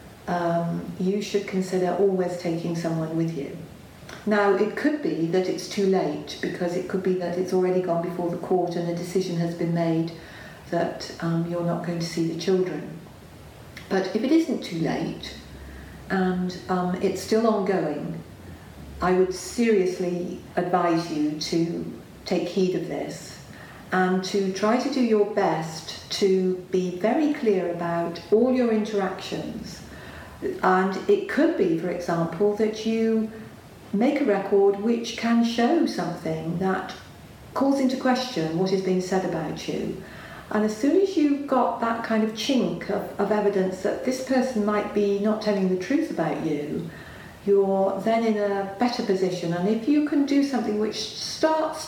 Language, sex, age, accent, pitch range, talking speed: English, female, 50-69, British, 175-220 Hz, 165 wpm